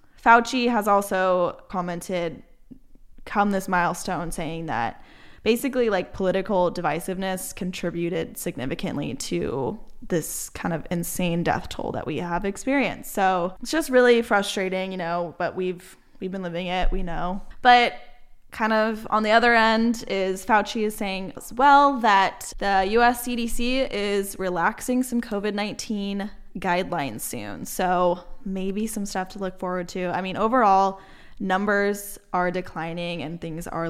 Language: English